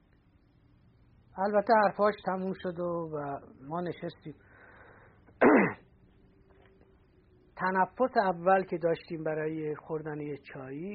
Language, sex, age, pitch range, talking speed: Persian, male, 50-69, 115-180 Hz, 75 wpm